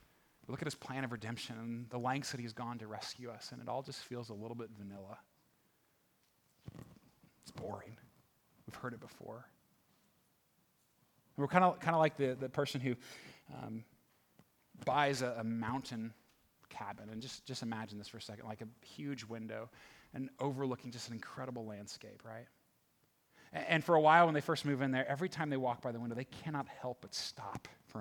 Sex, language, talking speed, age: male, English, 190 wpm, 30-49